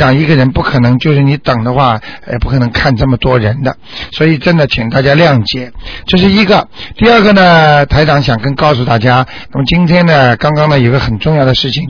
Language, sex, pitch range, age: Chinese, male, 130-170 Hz, 60-79